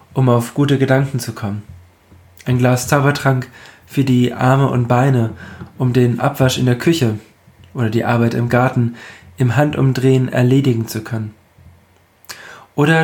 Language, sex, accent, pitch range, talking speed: German, male, German, 110-140 Hz, 145 wpm